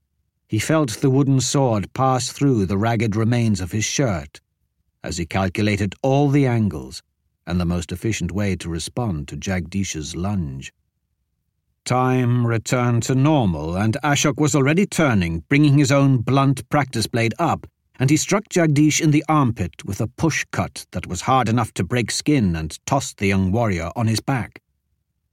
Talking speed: 170 wpm